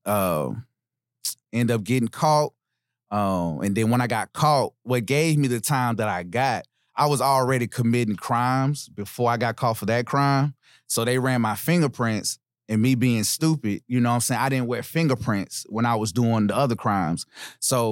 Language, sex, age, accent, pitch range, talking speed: English, male, 30-49, American, 110-135 Hz, 195 wpm